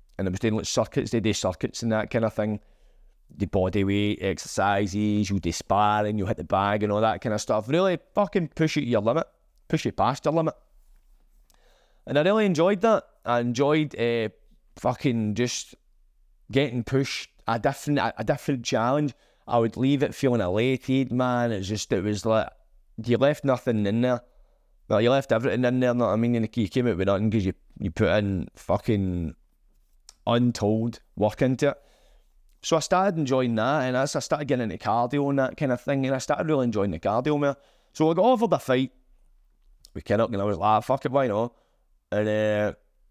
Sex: male